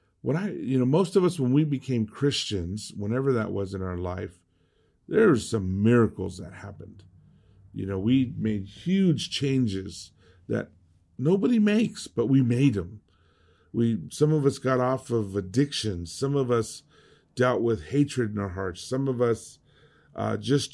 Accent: American